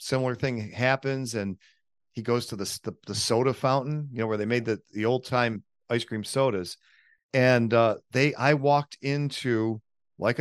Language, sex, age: English, male, 40-59